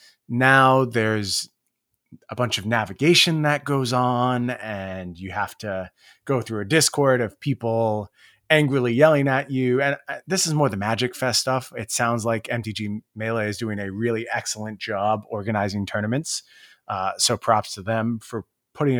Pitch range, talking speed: 105-130 Hz, 160 wpm